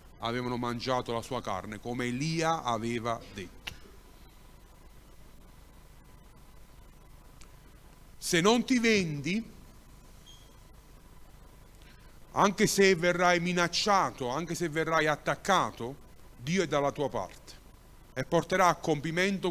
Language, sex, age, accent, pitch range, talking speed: Italian, male, 40-59, native, 125-185 Hz, 90 wpm